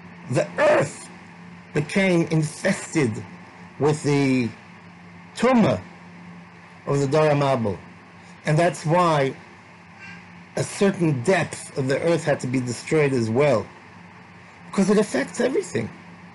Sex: male